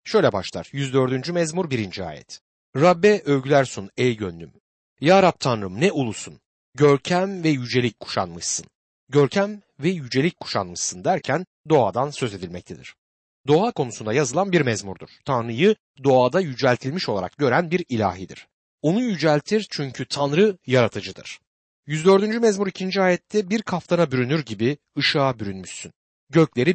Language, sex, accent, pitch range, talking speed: Turkish, male, native, 115-180 Hz, 125 wpm